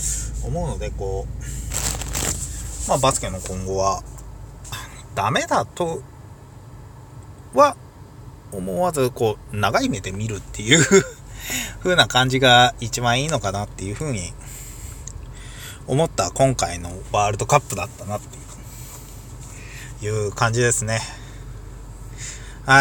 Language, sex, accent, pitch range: Japanese, male, native, 105-135 Hz